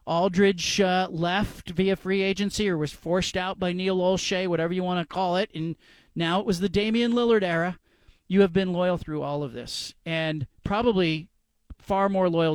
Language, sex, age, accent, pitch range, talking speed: English, male, 40-59, American, 160-200 Hz, 190 wpm